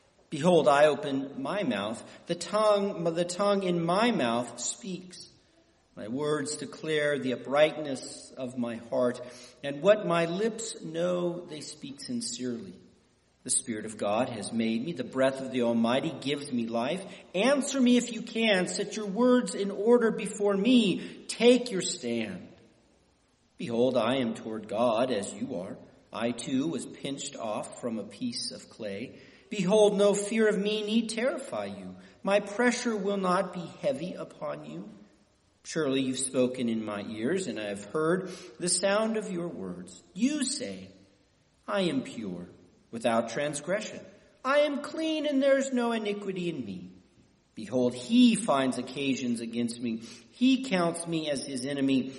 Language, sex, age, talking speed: English, male, 40-59, 160 wpm